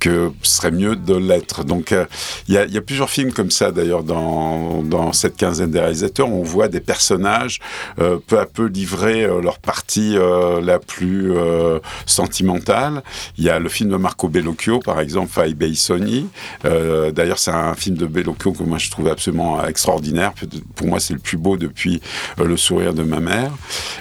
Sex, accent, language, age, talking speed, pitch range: male, French, French, 70-89, 200 wpm, 80-95 Hz